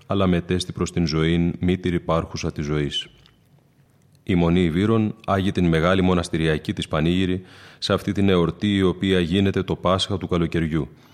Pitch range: 85-100 Hz